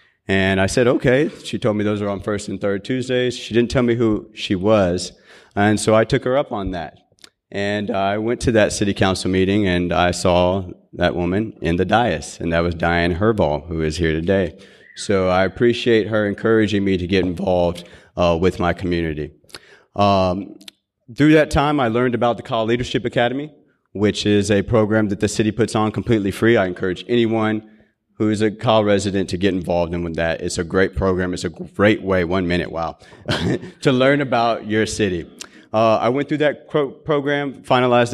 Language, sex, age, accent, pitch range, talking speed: English, male, 40-59, American, 95-120 Hz, 200 wpm